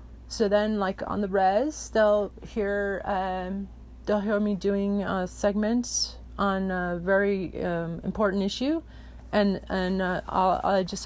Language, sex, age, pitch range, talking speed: English, female, 30-49, 195-240 Hz, 140 wpm